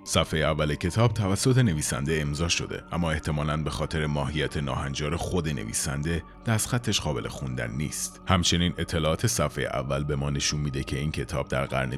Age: 30-49